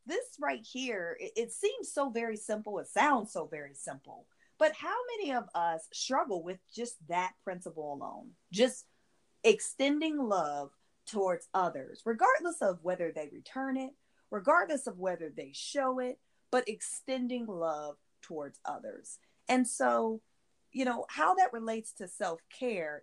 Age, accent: 30-49, American